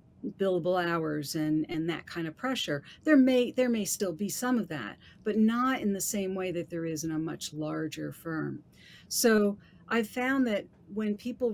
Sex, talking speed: female, 190 wpm